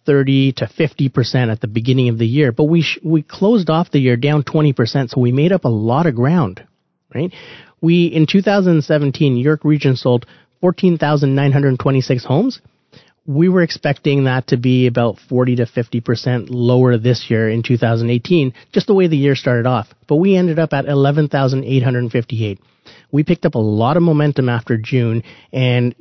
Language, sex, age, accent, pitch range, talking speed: English, male, 30-49, American, 125-150 Hz, 205 wpm